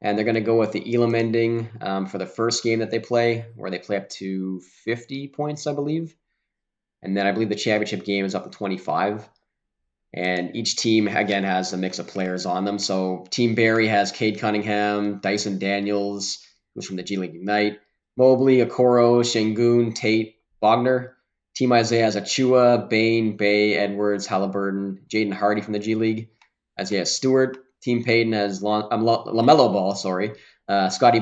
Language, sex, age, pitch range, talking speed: English, male, 20-39, 100-115 Hz, 175 wpm